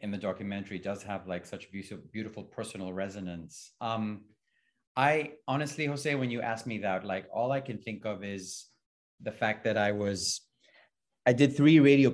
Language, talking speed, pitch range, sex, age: English, 180 wpm, 105-130 Hz, male, 30-49